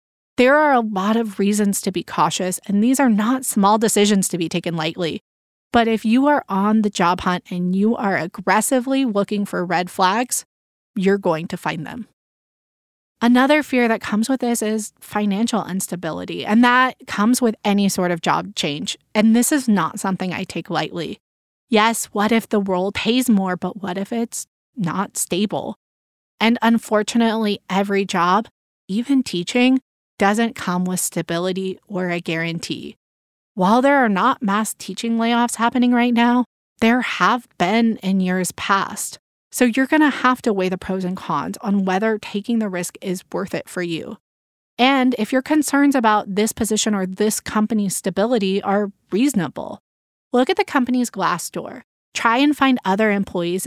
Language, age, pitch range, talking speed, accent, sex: English, 20-39, 185-240 Hz, 170 wpm, American, female